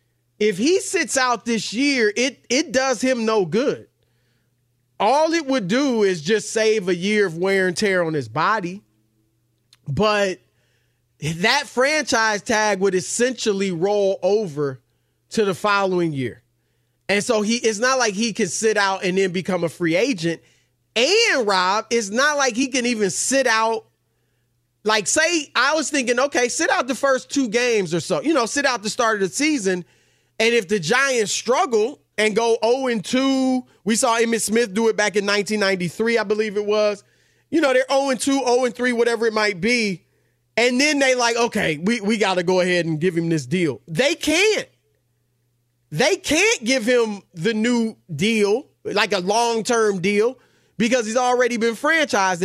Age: 30-49